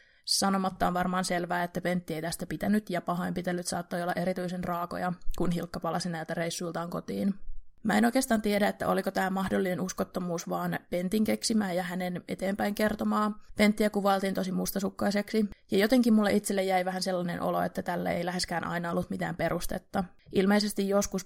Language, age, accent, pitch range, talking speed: Finnish, 20-39, native, 175-200 Hz, 165 wpm